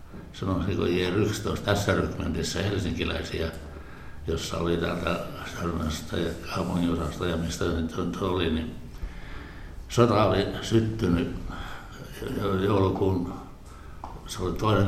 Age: 60-79